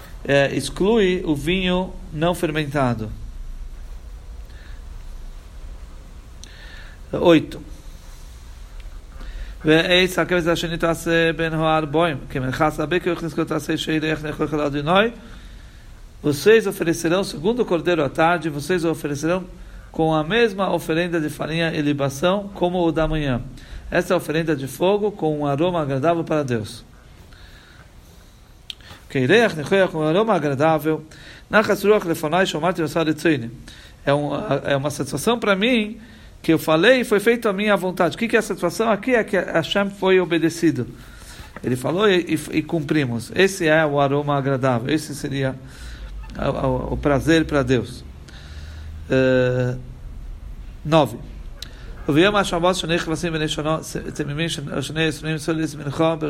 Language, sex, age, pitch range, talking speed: Portuguese, male, 50-69, 135-175 Hz, 95 wpm